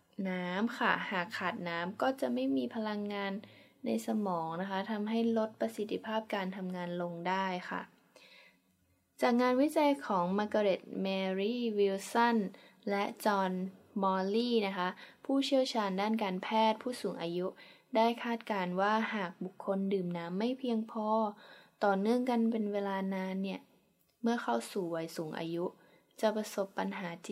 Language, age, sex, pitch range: English, 20-39, female, 180-220 Hz